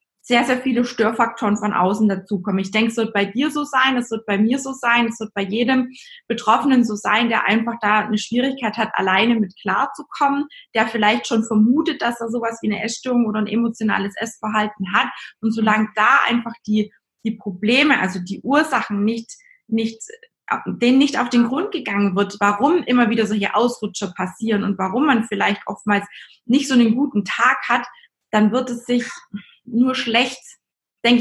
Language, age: German, 20-39